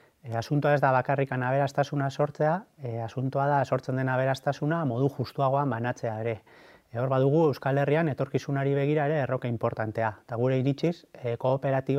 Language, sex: Spanish, male